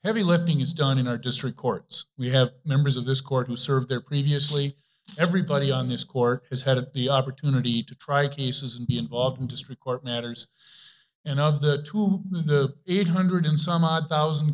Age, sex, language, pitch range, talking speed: 50-69, male, English, 130-155 Hz, 190 wpm